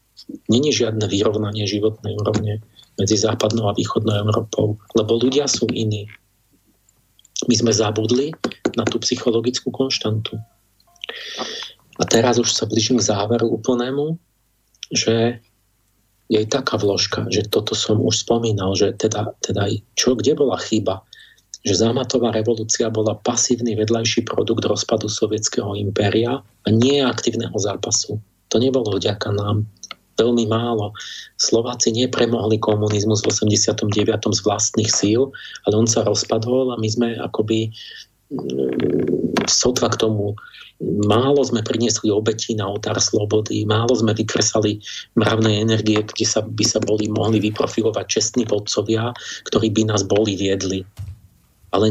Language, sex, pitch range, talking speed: Slovak, male, 105-120 Hz, 130 wpm